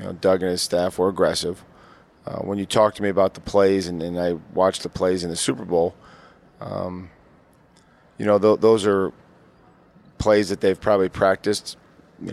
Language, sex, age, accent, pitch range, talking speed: English, male, 40-59, American, 90-105 Hz, 190 wpm